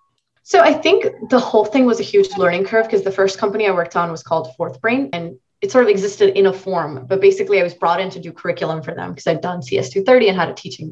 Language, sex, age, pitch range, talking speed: English, female, 20-39, 170-205 Hz, 270 wpm